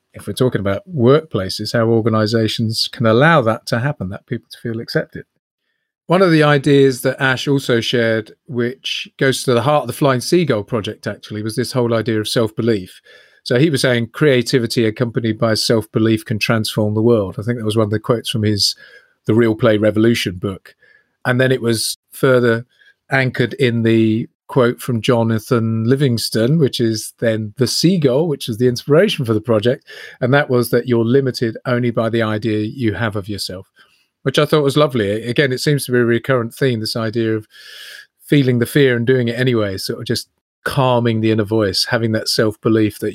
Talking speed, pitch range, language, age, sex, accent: 195 wpm, 110-130 Hz, English, 40-59, male, British